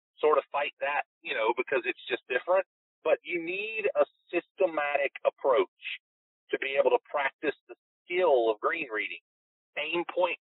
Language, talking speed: English, 155 wpm